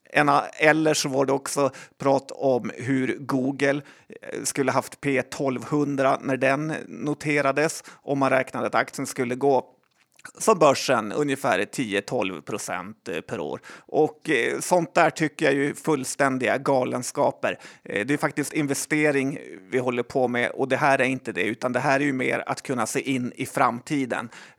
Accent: native